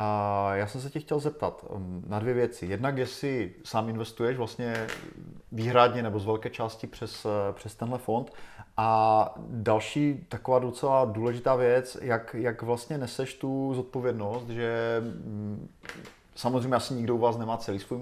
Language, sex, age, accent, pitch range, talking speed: Czech, male, 30-49, native, 115-130 Hz, 145 wpm